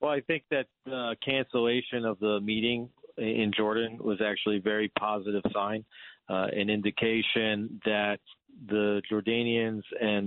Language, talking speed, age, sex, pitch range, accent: English, 135 wpm, 40-59, male, 100-115 Hz, American